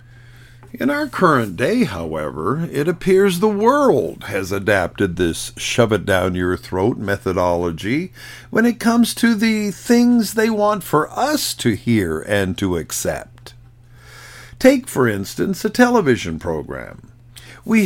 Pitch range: 110-180 Hz